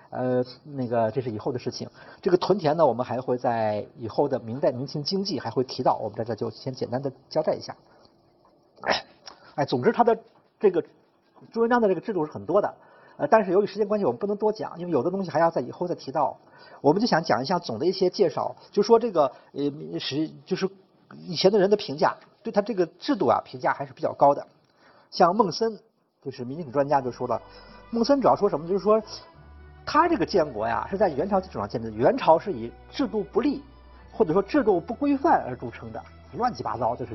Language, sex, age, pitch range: Chinese, male, 50-69, 130-205 Hz